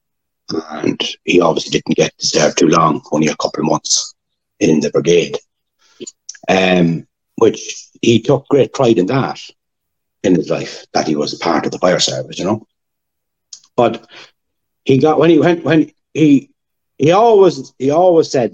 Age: 60-79